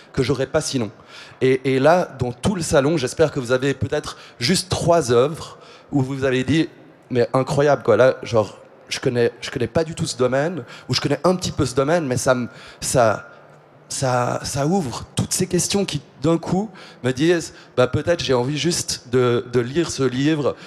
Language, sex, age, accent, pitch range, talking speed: English, male, 30-49, French, 125-155 Hz, 200 wpm